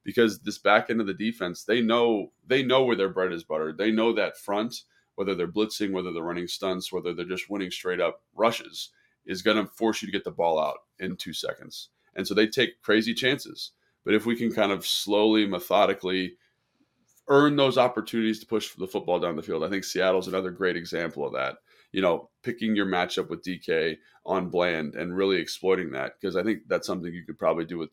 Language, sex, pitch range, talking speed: English, male, 90-110 Hz, 220 wpm